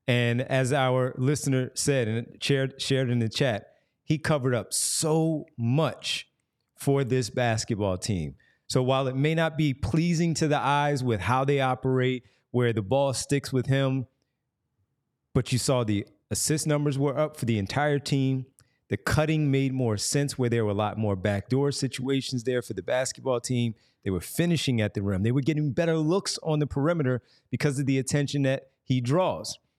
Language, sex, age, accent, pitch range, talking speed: English, male, 30-49, American, 120-145 Hz, 180 wpm